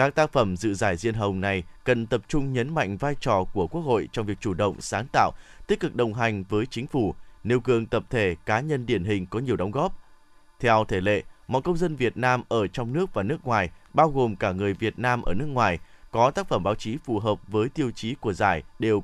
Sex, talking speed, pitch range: male, 250 wpm, 105-145 Hz